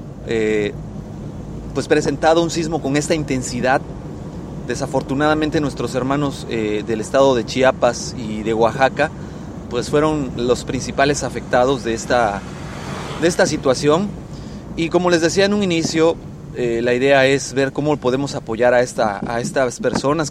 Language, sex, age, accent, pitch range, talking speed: Spanish, male, 30-49, Mexican, 120-150 Hz, 145 wpm